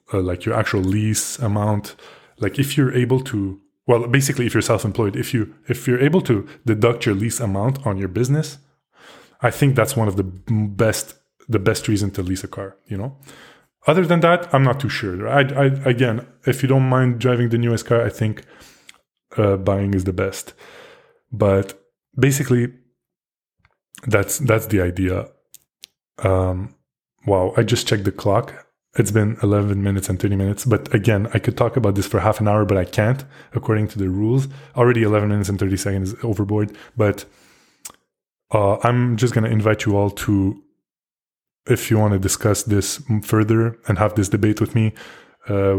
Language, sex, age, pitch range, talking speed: English, male, 20-39, 100-120 Hz, 185 wpm